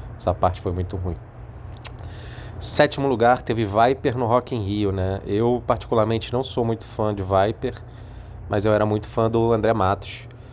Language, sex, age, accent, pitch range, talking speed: Portuguese, male, 20-39, Brazilian, 100-115 Hz, 170 wpm